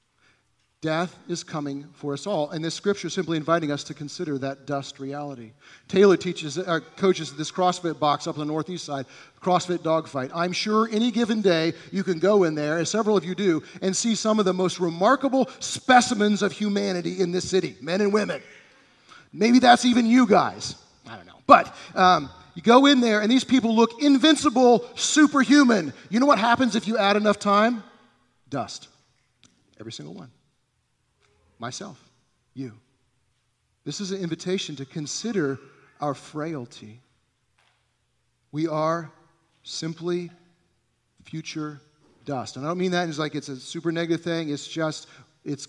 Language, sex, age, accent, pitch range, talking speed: English, male, 40-59, American, 130-190 Hz, 165 wpm